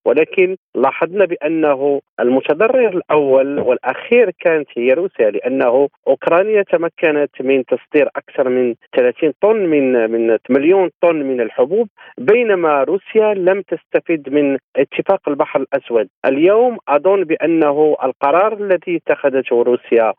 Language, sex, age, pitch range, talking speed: Arabic, male, 40-59, 135-215 Hz, 115 wpm